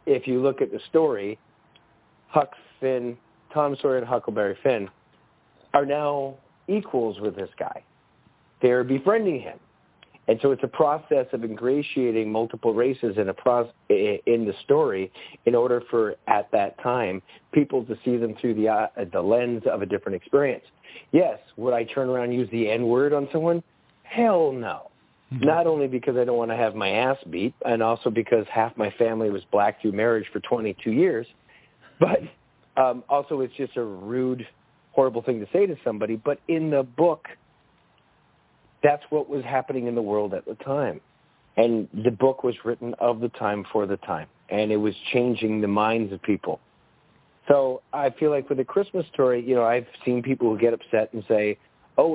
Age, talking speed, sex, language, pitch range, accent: 40-59, 180 wpm, male, English, 115-140 Hz, American